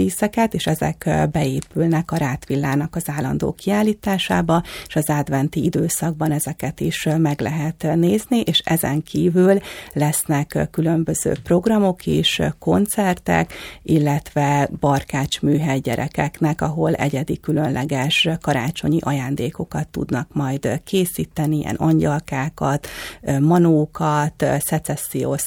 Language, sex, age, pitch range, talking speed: Hungarian, female, 40-59, 135-165 Hz, 100 wpm